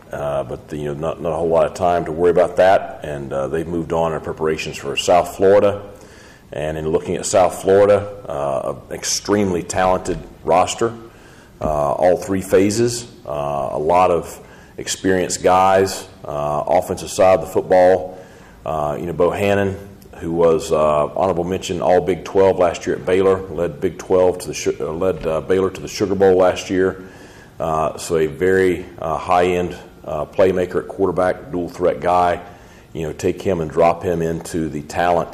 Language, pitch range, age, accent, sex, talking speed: English, 80-95 Hz, 40-59, American, male, 180 wpm